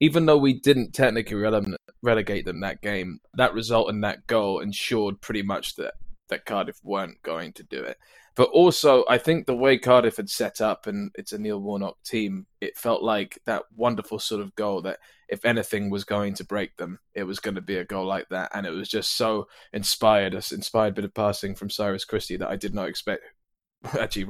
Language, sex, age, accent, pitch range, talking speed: English, male, 20-39, British, 105-155 Hz, 215 wpm